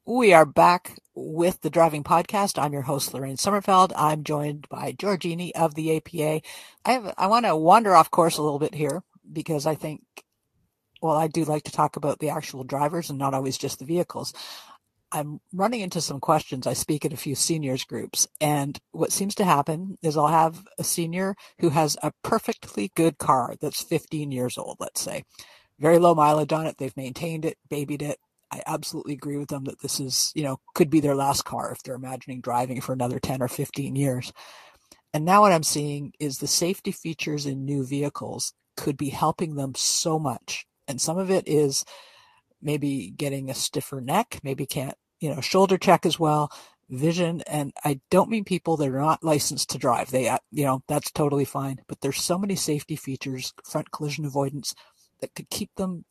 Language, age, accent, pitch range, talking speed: English, 60-79, American, 140-170 Hz, 200 wpm